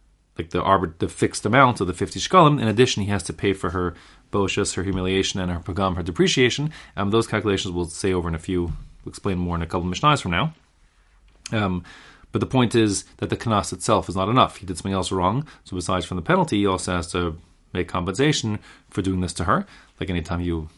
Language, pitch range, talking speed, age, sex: English, 90-115 Hz, 230 wpm, 30-49, male